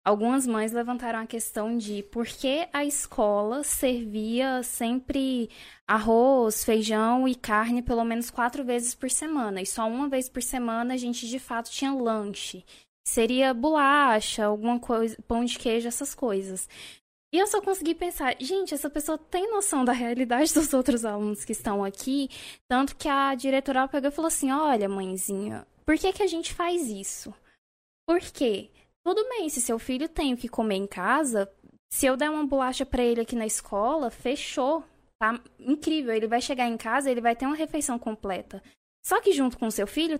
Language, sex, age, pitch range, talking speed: Portuguese, female, 10-29, 230-295 Hz, 180 wpm